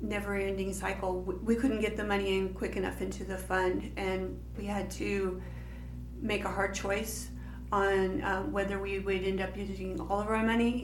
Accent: American